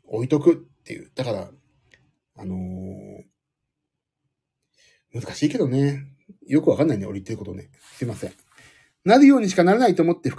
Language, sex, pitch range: Japanese, male, 135-220 Hz